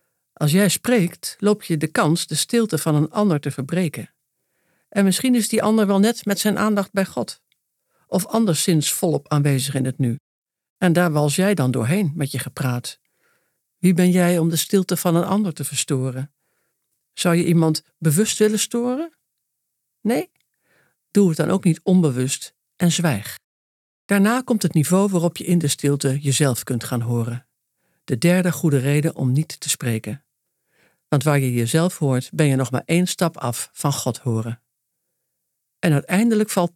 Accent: Dutch